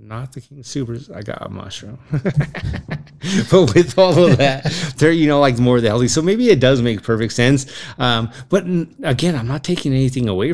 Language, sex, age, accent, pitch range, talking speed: English, male, 30-49, American, 110-135 Hz, 200 wpm